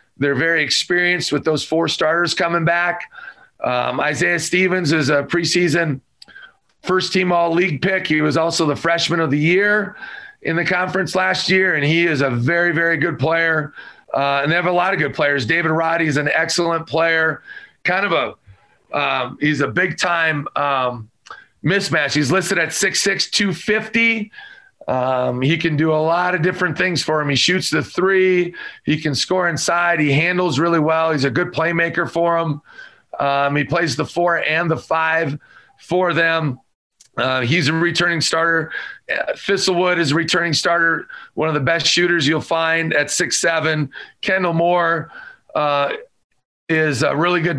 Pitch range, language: 155-175 Hz, English